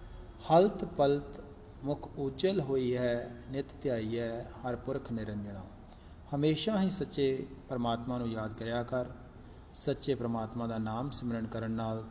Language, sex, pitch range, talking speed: Punjabi, male, 110-130 Hz, 140 wpm